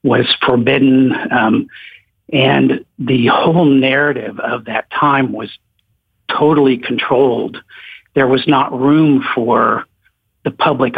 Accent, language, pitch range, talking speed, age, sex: American, English, 115-140 Hz, 110 wpm, 60-79, male